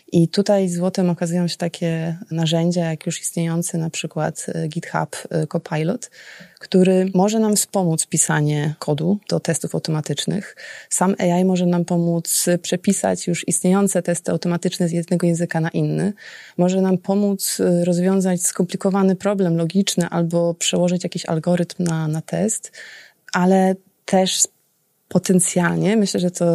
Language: Polish